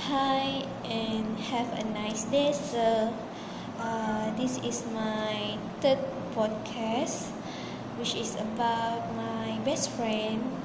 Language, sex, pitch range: English, female, 225-250 Hz